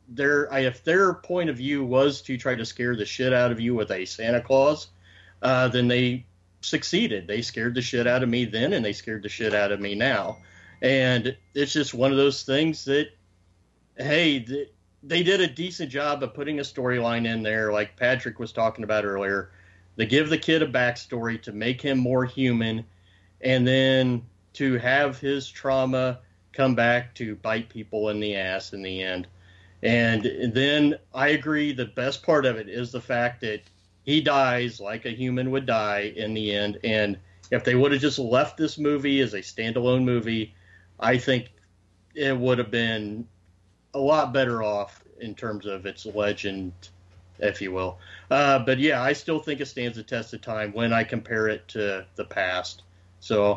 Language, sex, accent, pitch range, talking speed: English, male, American, 100-135 Hz, 190 wpm